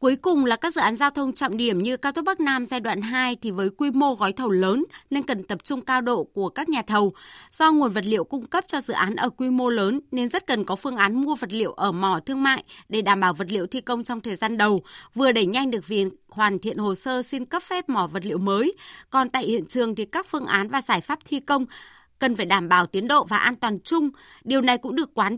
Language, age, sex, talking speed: Vietnamese, 20-39, female, 275 wpm